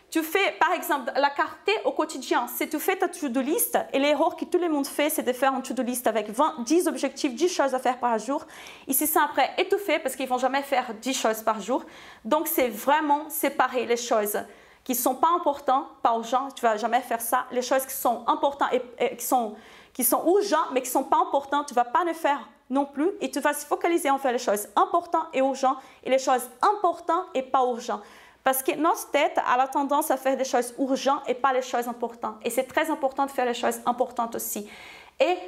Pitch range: 255-310 Hz